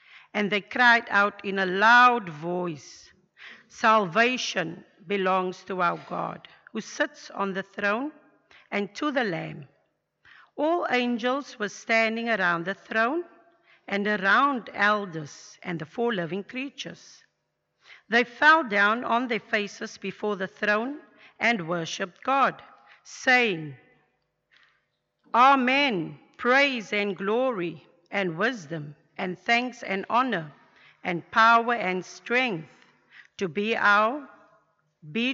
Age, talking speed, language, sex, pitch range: 50-69, 115 wpm, English, female, 185-235 Hz